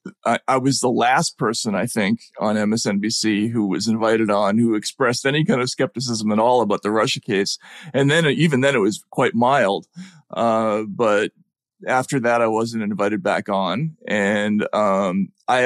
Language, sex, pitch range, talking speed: English, male, 115-140 Hz, 175 wpm